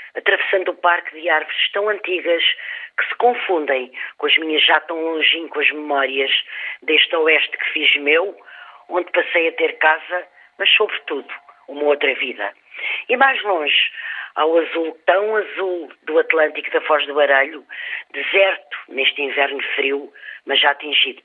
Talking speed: 155 wpm